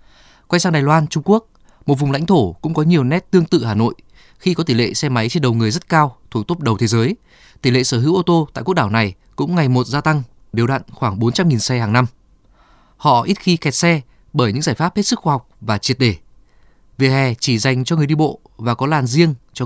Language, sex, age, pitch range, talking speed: Vietnamese, male, 20-39, 120-160 Hz, 260 wpm